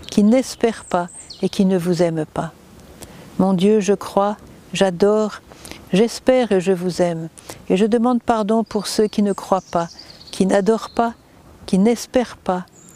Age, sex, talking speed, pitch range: 50-69, female, 160 wpm, 180-215 Hz